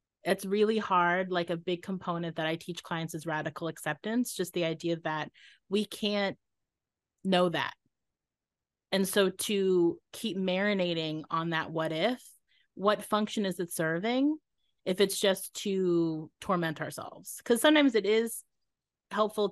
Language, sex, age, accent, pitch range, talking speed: English, female, 30-49, American, 165-195 Hz, 145 wpm